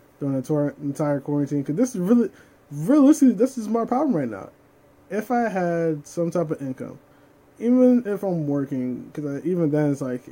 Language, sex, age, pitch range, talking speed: English, male, 20-39, 140-180 Hz, 180 wpm